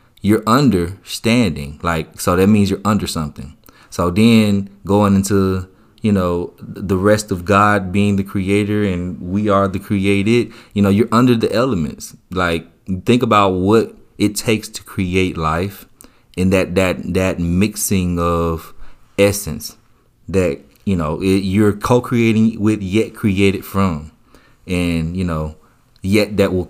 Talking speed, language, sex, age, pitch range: 145 wpm, English, male, 30-49, 85-105 Hz